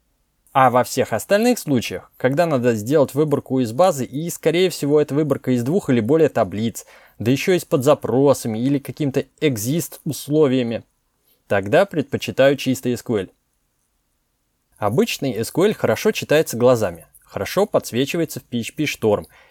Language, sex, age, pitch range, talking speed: Russian, male, 20-39, 120-160 Hz, 135 wpm